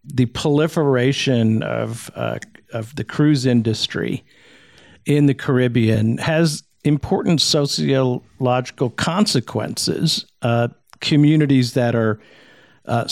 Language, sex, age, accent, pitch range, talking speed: English, male, 50-69, American, 120-145 Hz, 90 wpm